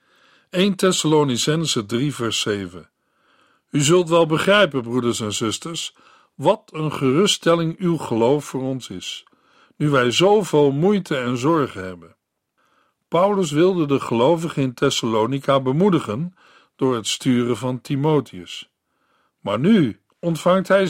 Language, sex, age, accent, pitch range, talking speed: Dutch, male, 50-69, Dutch, 130-170 Hz, 125 wpm